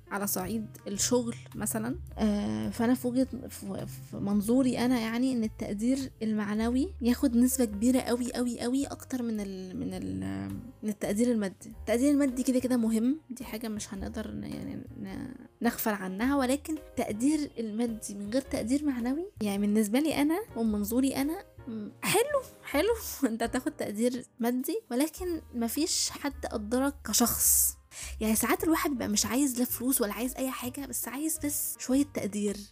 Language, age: Arabic, 10-29